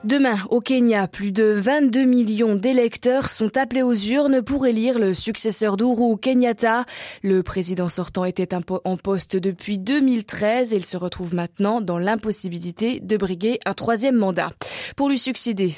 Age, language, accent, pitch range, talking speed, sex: 20-39, French, French, 190-245 Hz, 150 wpm, female